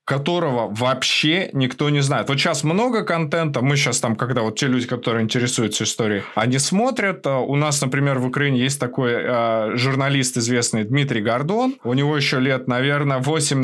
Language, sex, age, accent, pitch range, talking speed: Russian, male, 20-39, native, 125-160 Hz, 170 wpm